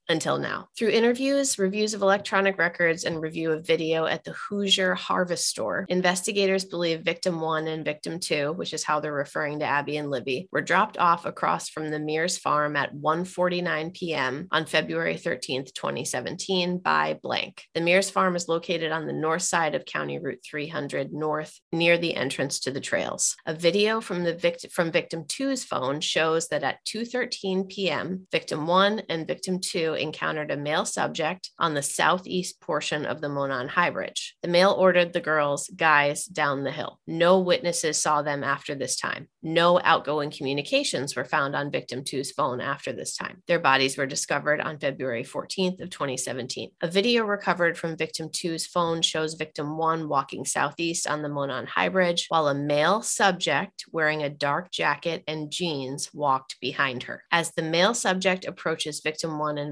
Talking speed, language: 180 wpm, English